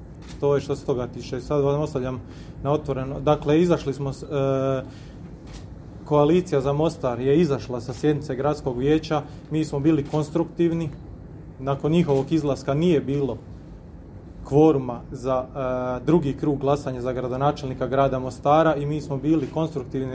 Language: Croatian